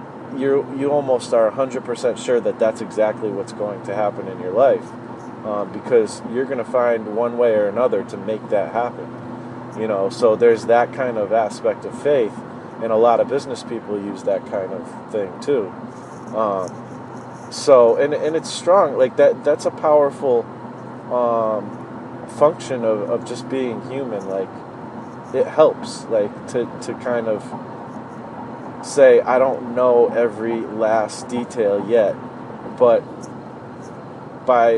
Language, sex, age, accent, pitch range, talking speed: English, male, 30-49, American, 110-130 Hz, 155 wpm